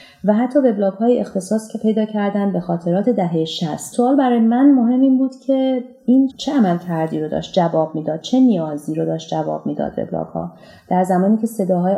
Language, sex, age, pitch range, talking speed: Persian, female, 30-49, 170-225 Hz, 185 wpm